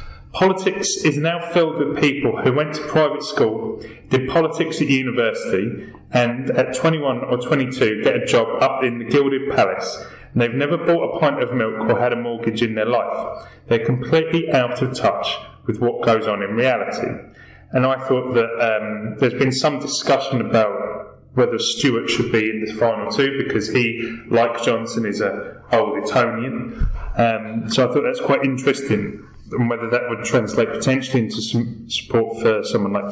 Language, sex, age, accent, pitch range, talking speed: English, male, 20-39, British, 115-145 Hz, 180 wpm